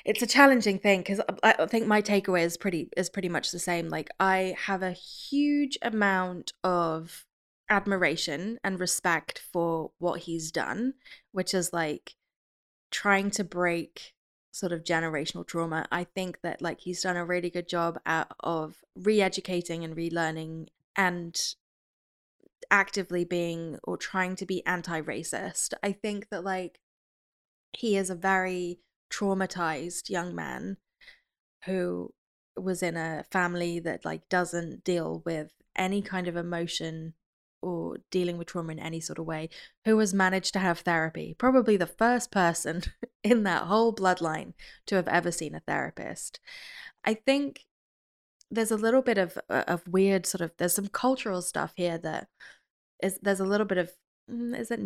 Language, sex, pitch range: English, female, 170-200 Hz